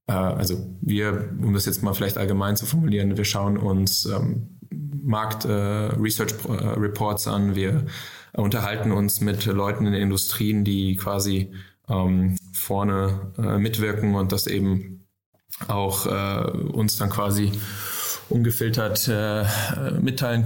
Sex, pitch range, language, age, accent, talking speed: male, 95-110 Hz, German, 20-39, German, 125 wpm